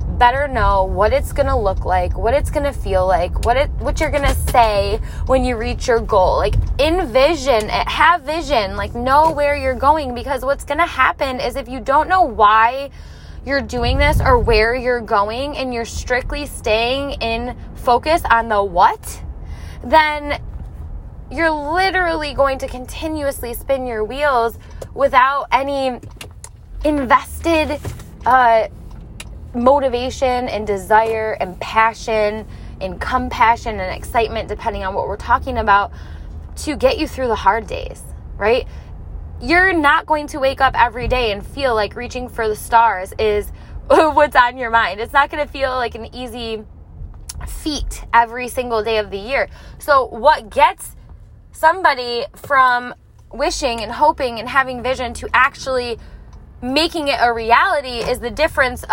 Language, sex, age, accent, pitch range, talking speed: English, female, 20-39, American, 230-295 Hz, 155 wpm